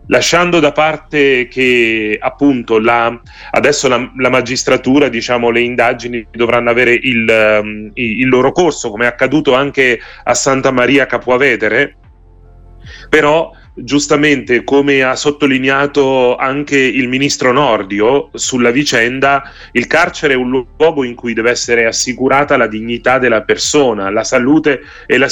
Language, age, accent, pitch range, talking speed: Italian, 30-49, native, 120-140 Hz, 135 wpm